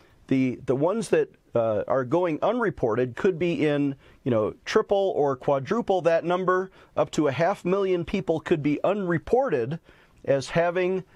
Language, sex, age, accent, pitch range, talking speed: English, male, 40-59, American, 140-195 Hz, 155 wpm